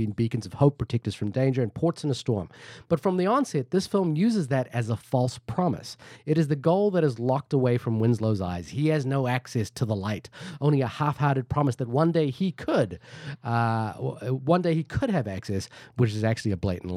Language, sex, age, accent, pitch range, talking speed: English, male, 30-49, American, 115-145 Hz, 225 wpm